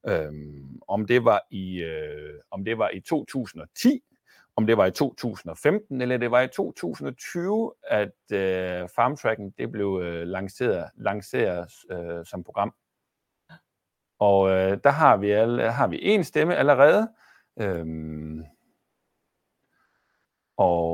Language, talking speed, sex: Danish, 120 wpm, male